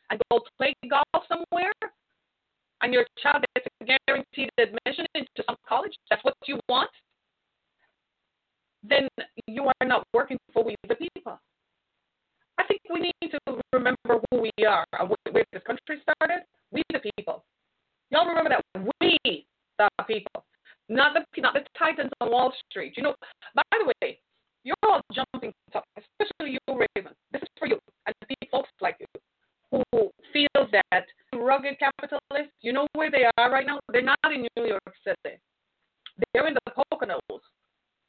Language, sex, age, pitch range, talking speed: English, female, 30-49, 235-330 Hz, 160 wpm